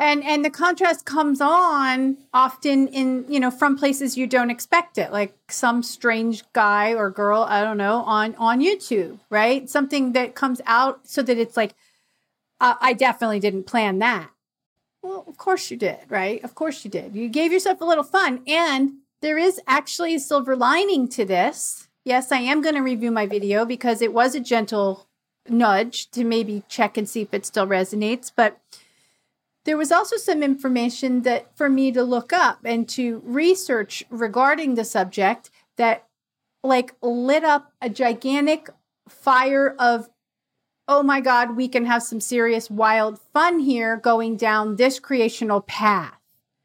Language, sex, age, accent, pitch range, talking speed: English, female, 40-59, American, 230-285 Hz, 170 wpm